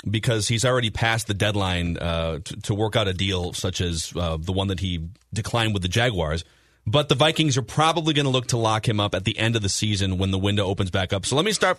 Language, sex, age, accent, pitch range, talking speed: English, male, 30-49, American, 100-145 Hz, 265 wpm